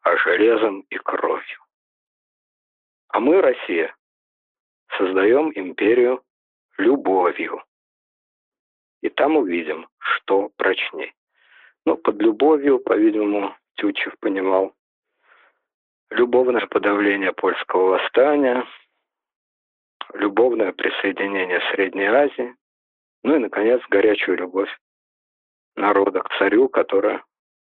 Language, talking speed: Russian, 85 wpm